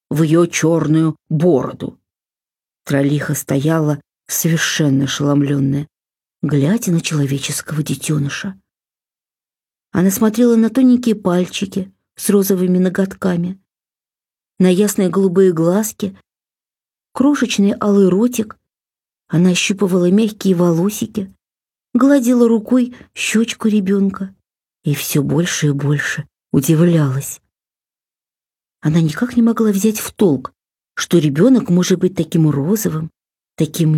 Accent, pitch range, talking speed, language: native, 160-215 Hz, 95 wpm, Russian